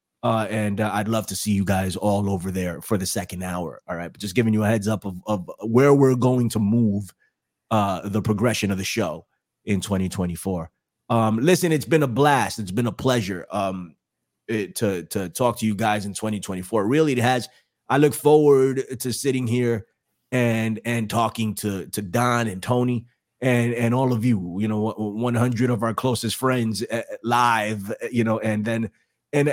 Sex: male